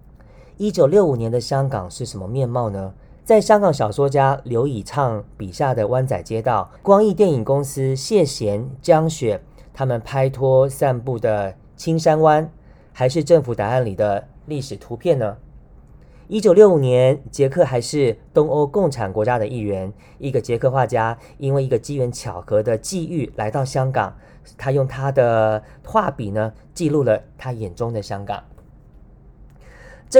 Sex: male